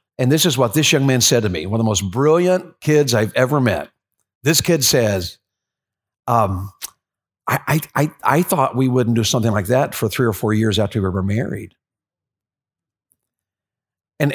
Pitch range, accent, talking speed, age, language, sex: 115-155 Hz, American, 180 wpm, 50-69, English, male